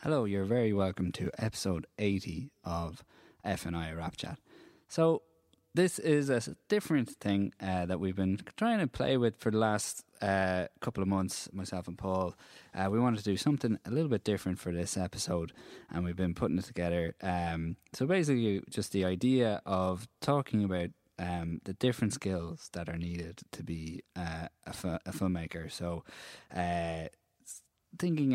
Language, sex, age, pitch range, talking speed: English, male, 20-39, 85-110 Hz, 165 wpm